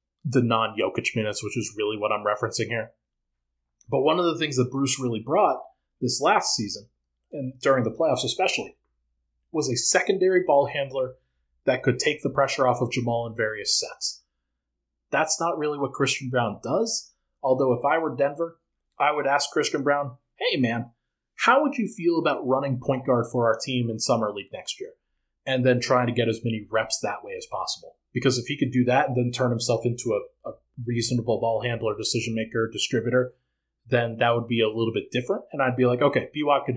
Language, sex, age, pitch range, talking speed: English, male, 30-49, 115-145 Hz, 200 wpm